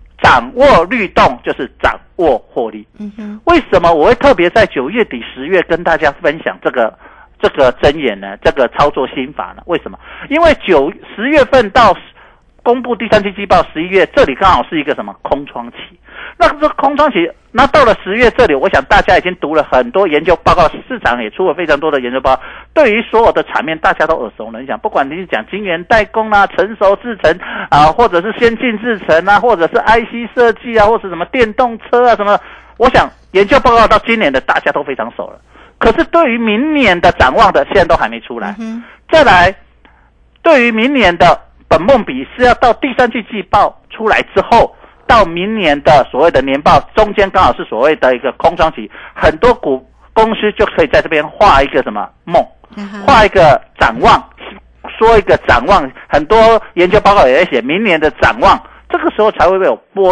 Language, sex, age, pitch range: Chinese, male, 50-69, 190-245 Hz